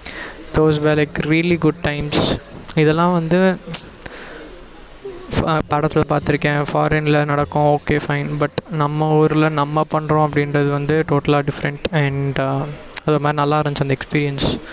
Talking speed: 130 wpm